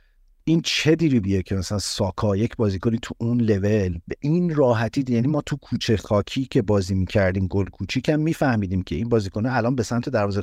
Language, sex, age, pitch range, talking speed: Persian, male, 50-69, 95-130 Hz, 190 wpm